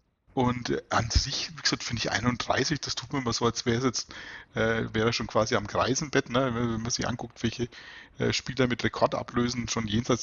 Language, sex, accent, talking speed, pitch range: German, male, German, 200 wpm, 115-135 Hz